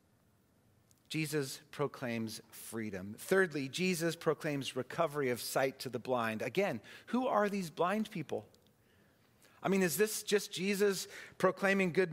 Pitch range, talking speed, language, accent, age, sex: 135-200 Hz, 130 wpm, English, American, 40-59, male